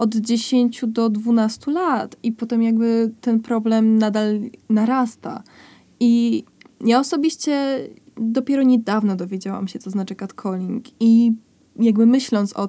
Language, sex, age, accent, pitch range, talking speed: Polish, female, 20-39, native, 205-250 Hz, 125 wpm